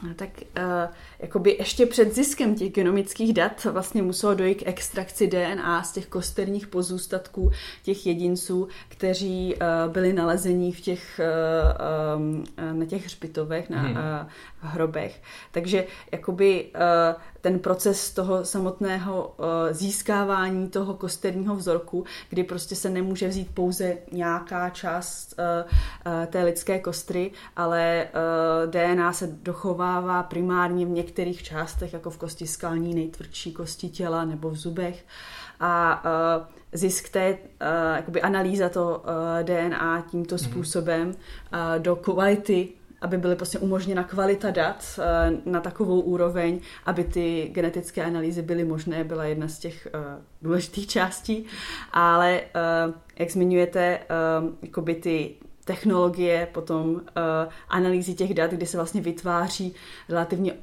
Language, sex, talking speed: Czech, female, 125 wpm